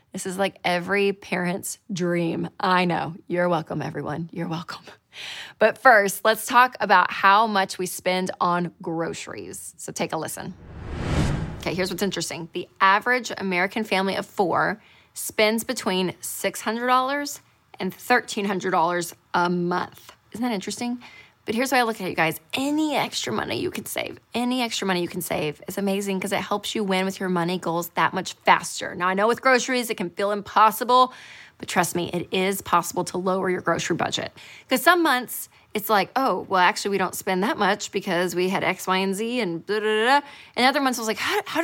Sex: female